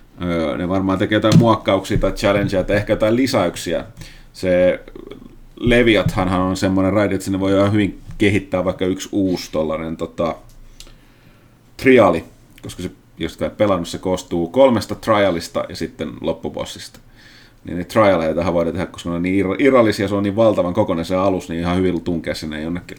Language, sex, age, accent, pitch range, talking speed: Finnish, male, 30-49, native, 95-125 Hz, 160 wpm